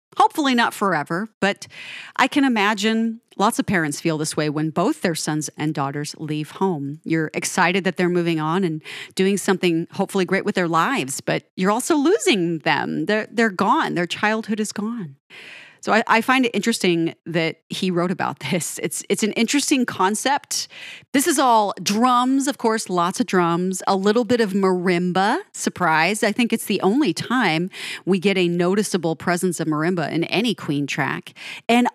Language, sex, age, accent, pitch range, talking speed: English, female, 30-49, American, 165-220 Hz, 180 wpm